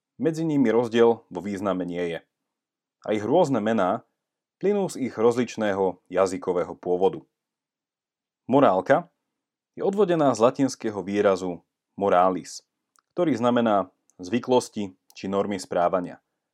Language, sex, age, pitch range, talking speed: Slovak, male, 30-49, 95-130 Hz, 110 wpm